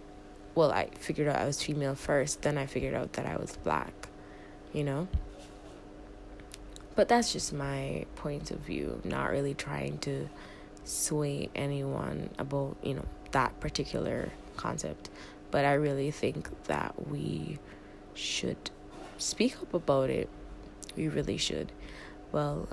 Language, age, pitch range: English, 20-39, 100-150 Hz